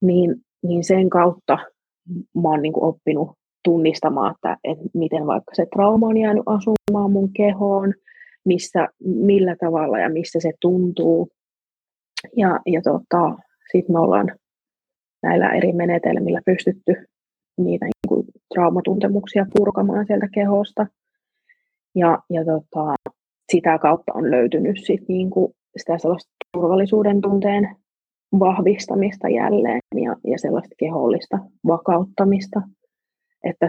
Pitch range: 170-205 Hz